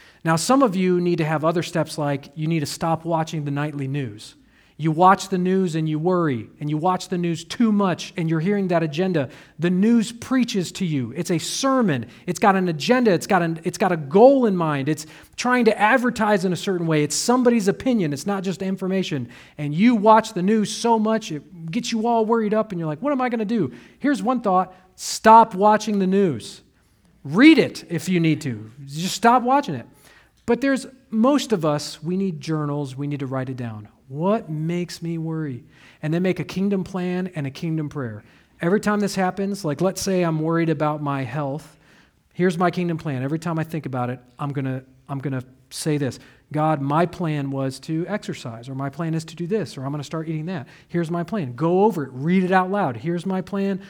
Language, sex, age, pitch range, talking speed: English, male, 40-59, 150-200 Hz, 220 wpm